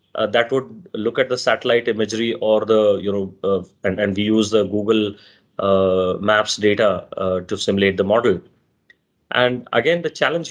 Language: English